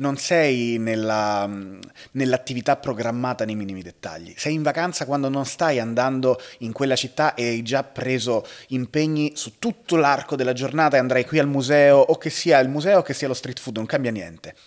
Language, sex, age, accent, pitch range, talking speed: Italian, male, 30-49, native, 115-150 Hz, 190 wpm